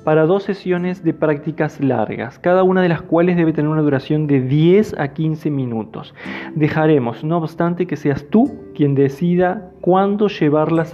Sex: male